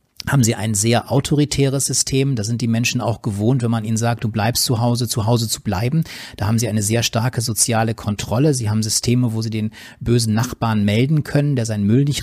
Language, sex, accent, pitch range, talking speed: German, male, German, 110-125 Hz, 225 wpm